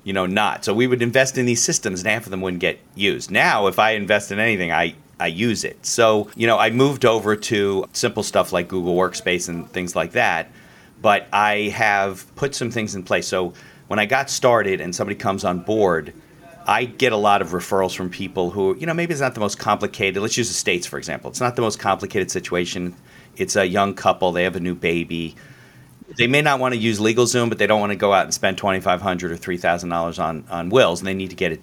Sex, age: male, 40-59